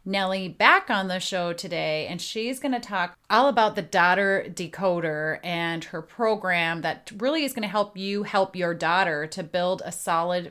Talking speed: 190 wpm